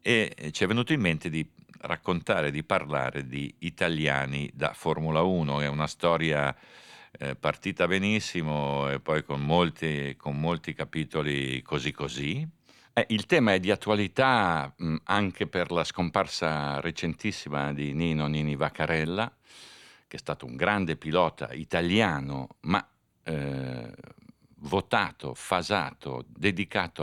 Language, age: Italian, 50-69